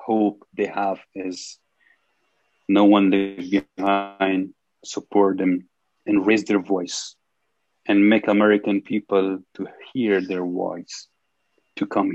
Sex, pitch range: male, 95-110 Hz